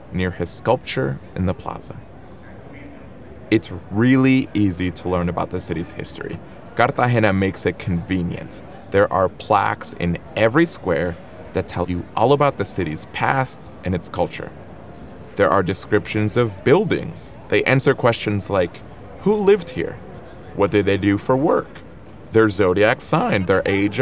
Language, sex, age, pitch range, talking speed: English, male, 30-49, 90-115 Hz, 145 wpm